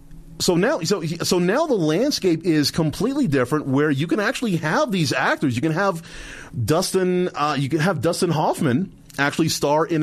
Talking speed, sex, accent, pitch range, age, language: 180 wpm, male, American, 135-195 Hz, 40-59, English